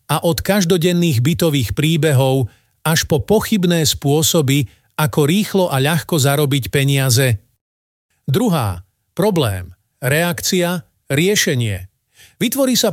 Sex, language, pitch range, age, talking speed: male, Slovak, 135-190 Hz, 40-59, 100 wpm